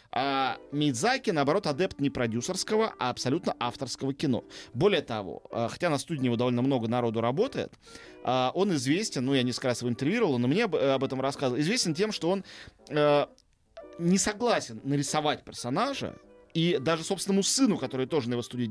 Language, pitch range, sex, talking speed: Russian, 130-175 Hz, male, 160 wpm